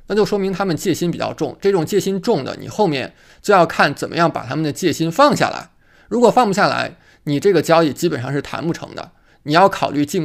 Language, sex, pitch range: Chinese, male, 150-205 Hz